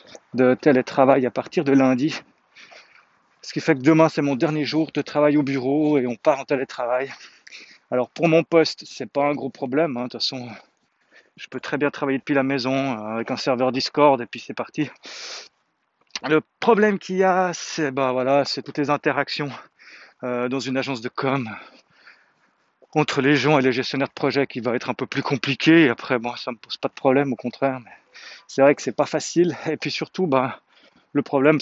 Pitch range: 130-155 Hz